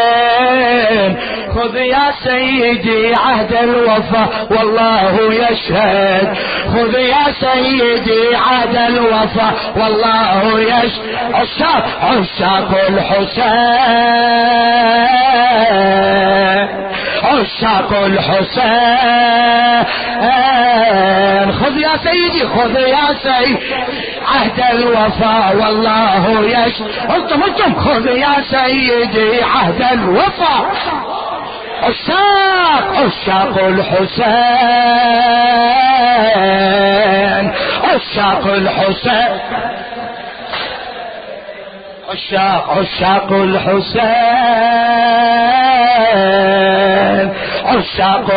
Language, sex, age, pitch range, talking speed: Arabic, male, 40-59, 205-250 Hz, 50 wpm